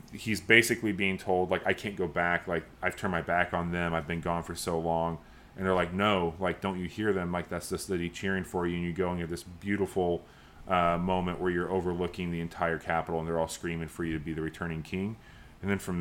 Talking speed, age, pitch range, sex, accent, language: 245 wpm, 20-39, 85-100 Hz, male, American, English